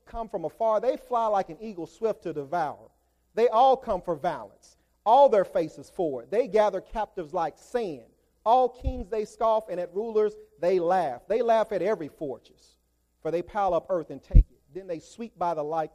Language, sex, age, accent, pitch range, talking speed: English, male, 40-59, American, 175-240 Hz, 200 wpm